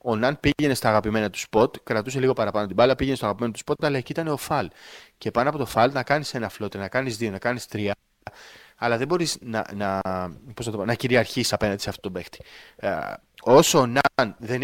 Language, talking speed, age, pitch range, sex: Greek, 215 wpm, 20-39, 105-140 Hz, male